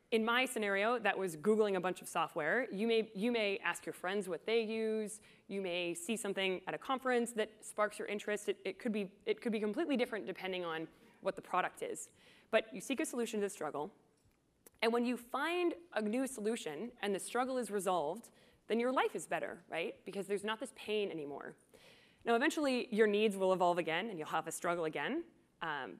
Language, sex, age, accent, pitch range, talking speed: English, female, 20-39, American, 190-245 Hz, 205 wpm